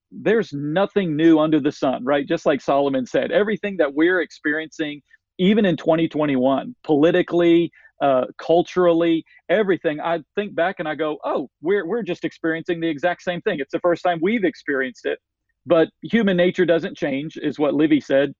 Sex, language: male, English